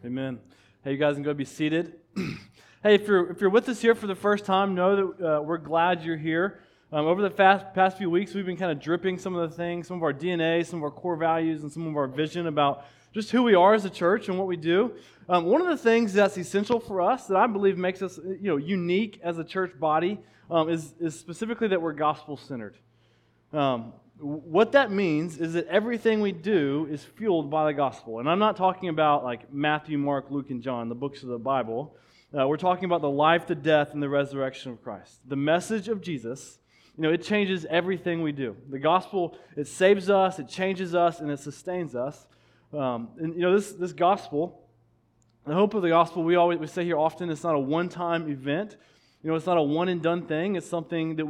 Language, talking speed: English, 230 wpm